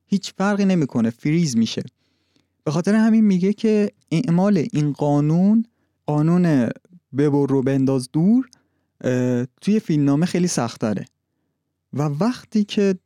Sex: male